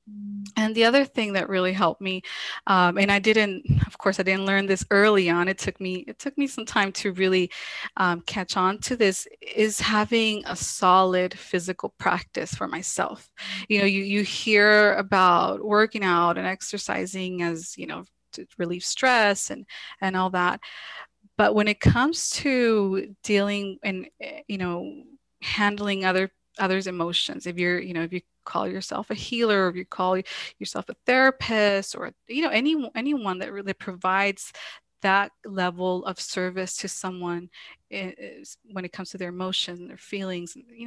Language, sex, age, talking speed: English, female, 20-39, 175 wpm